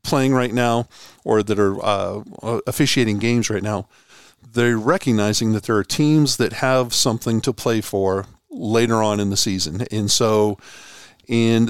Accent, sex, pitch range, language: American, male, 110-130 Hz, English